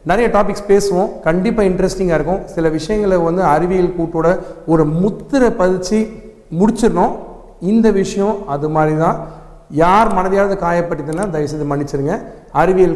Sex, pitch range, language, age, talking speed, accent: male, 150-200 Hz, Tamil, 40-59, 120 wpm, native